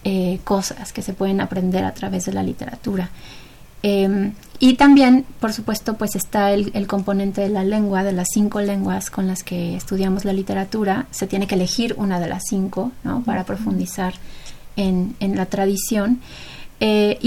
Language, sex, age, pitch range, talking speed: Spanish, female, 30-49, 190-210 Hz, 170 wpm